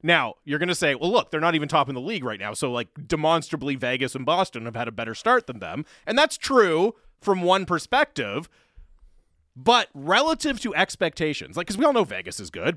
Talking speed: 215 wpm